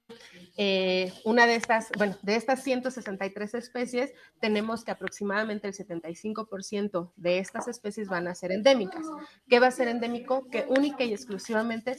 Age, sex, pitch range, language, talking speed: 30-49, female, 185-240 Hz, Spanish, 150 wpm